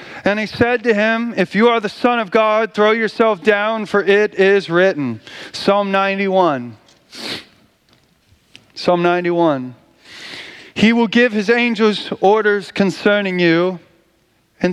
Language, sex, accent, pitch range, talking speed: English, male, American, 160-215 Hz, 130 wpm